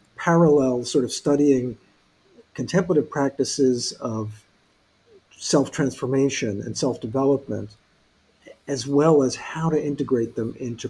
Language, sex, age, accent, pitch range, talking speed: English, male, 50-69, American, 120-145 Hz, 100 wpm